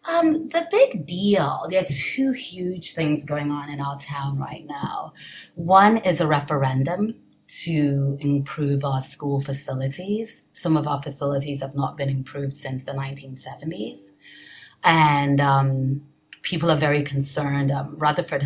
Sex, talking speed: female, 145 wpm